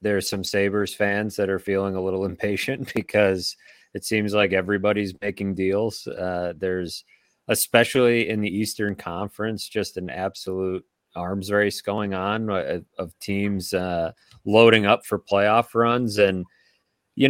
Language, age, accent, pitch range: English, 30-49, American, 95-105 Hz